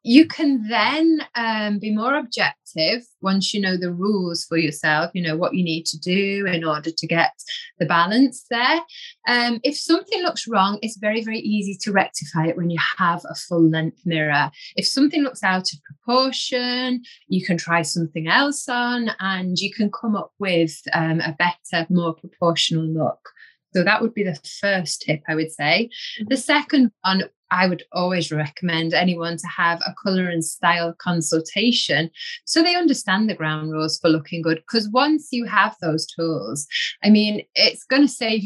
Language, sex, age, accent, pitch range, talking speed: English, female, 20-39, British, 170-245 Hz, 185 wpm